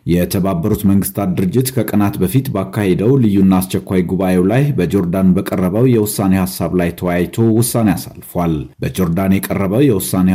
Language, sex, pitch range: Amharic, male, 90-110 Hz